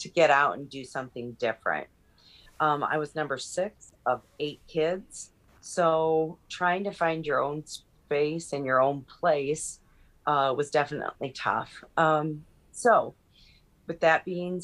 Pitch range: 140-160 Hz